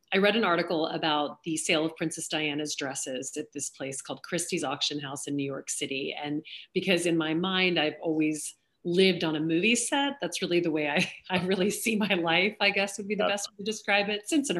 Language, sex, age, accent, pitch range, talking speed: English, female, 40-59, American, 155-185 Hz, 230 wpm